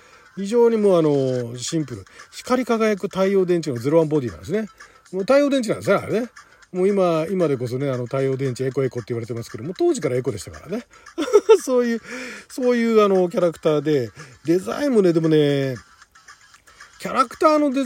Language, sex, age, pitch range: Japanese, male, 40-59, 150-245 Hz